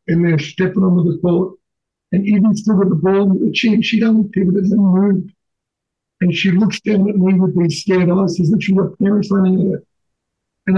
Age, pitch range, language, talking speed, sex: 60-79, 175-195 Hz, English, 215 wpm, male